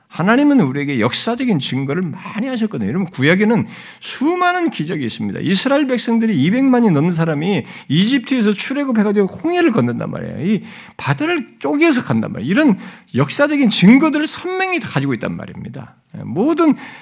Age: 50-69